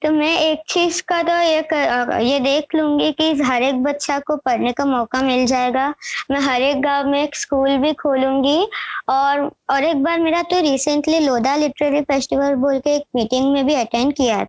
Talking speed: 195 wpm